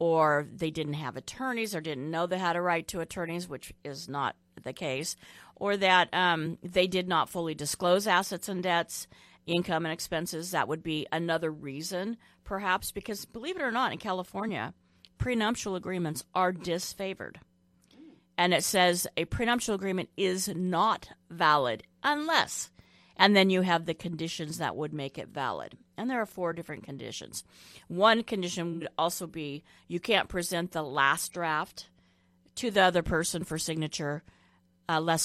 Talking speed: 165 wpm